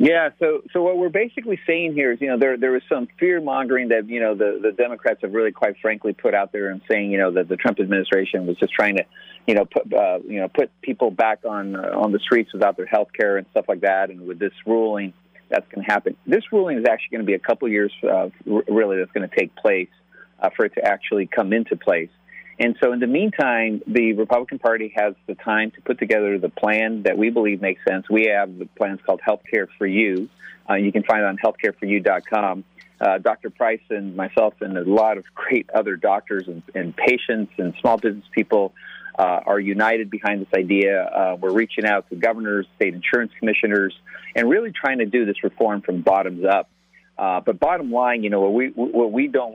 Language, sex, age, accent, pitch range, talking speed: English, male, 40-59, American, 100-120 Hz, 230 wpm